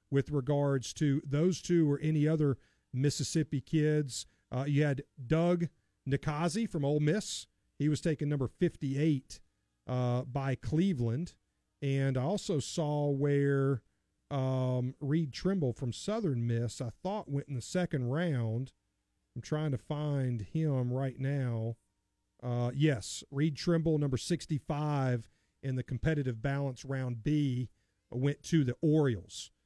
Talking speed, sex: 135 wpm, male